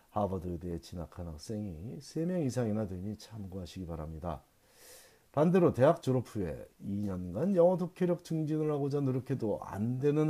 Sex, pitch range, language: male, 95-130 Hz, Korean